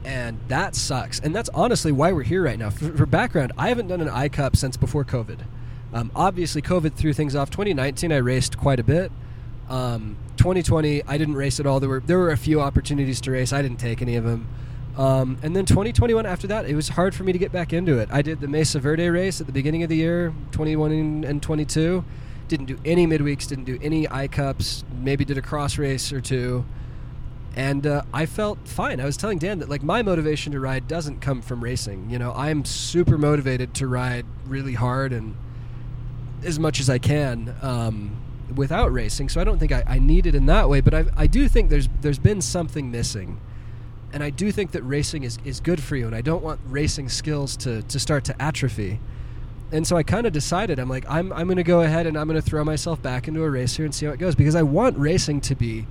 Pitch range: 125-155 Hz